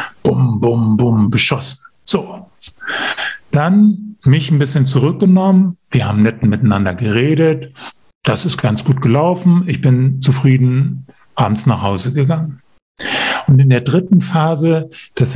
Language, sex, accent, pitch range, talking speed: German, male, German, 130-180 Hz, 125 wpm